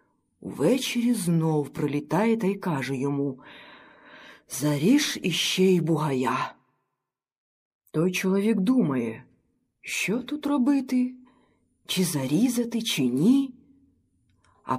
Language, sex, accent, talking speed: Ukrainian, female, native, 90 wpm